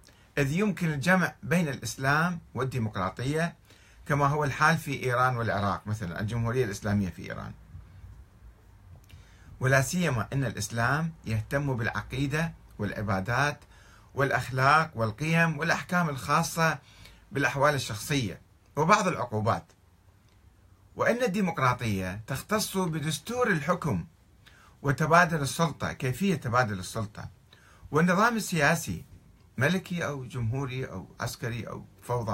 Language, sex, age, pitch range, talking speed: Arabic, male, 50-69, 100-155 Hz, 95 wpm